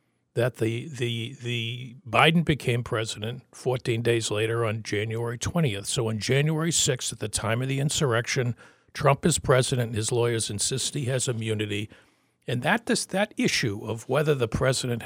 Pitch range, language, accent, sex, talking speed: 115-145 Hz, English, American, male, 165 wpm